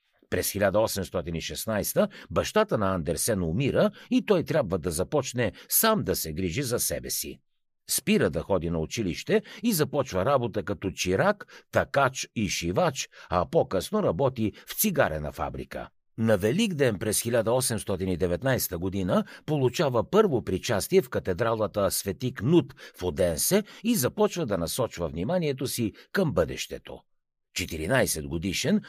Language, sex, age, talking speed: Bulgarian, male, 60-79, 125 wpm